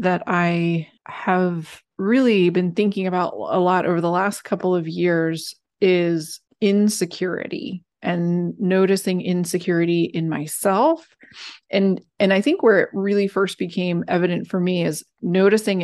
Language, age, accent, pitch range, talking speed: English, 20-39, American, 170-200 Hz, 135 wpm